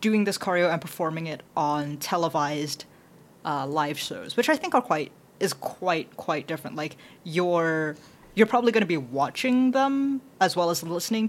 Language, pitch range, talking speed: English, 160-210 Hz, 175 wpm